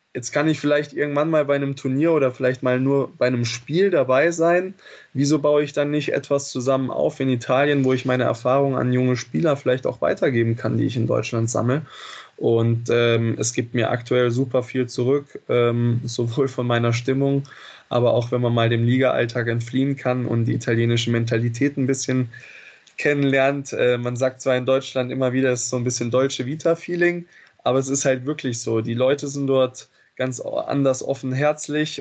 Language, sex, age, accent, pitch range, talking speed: German, male, 20-39, German, 125-140 Hz, 195 wpm